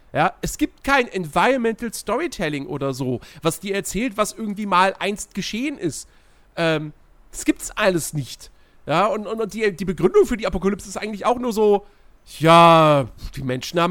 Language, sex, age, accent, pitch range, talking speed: German, male, 40-59, German, 150-220 Hz, 175 wpm